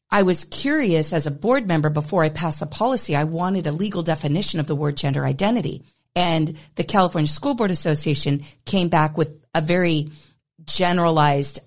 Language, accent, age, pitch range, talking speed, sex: English, American, 40-59, 150-180 Hz, 175 wpm, female